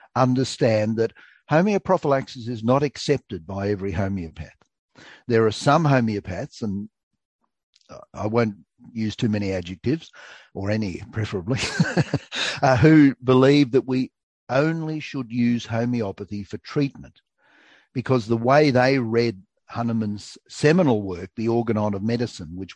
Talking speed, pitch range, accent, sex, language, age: 125 wpm, 105-125 Hz, Australian, male, English, 50-69